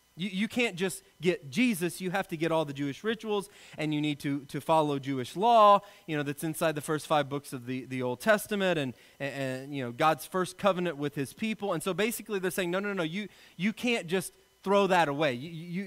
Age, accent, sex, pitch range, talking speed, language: 30-49, American, male, 145-195 Hz, 240 wpm, English